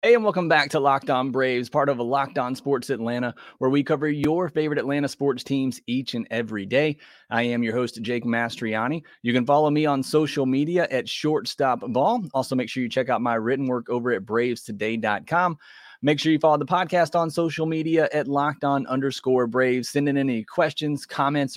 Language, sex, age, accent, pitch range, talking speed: English, male, 30-49, American, 125-160 Hz, 200 wpm